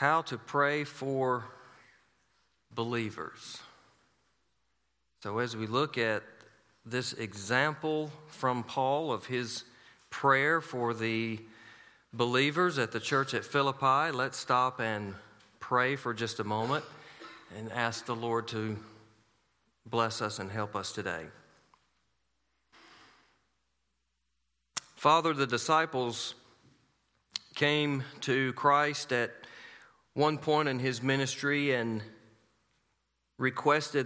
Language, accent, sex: English, American, male